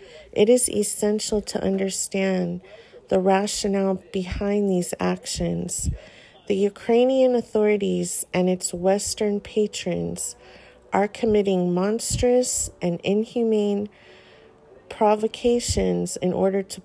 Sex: female